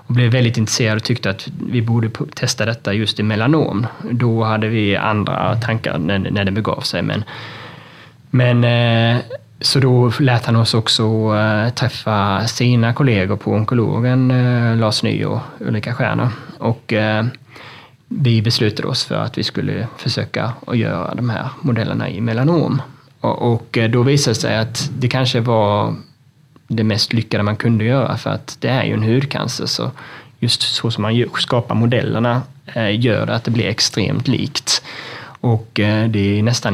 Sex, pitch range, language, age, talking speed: male, 110-130 Hz, Swedish, 20-39, 155 wpm